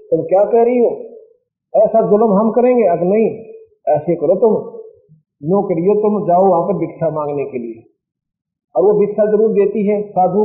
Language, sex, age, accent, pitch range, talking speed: Hindi, male, 50-69, native, 150-210 Hz, 180 wpm